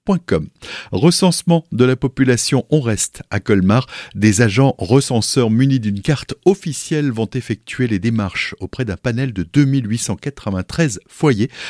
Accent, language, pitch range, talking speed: French, French, 100-140 Hz, 140 wpm